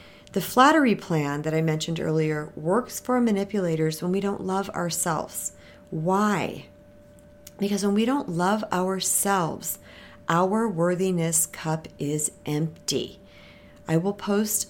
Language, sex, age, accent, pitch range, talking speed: English, female, 50-69, American, 155-200 Hz, 125 wpm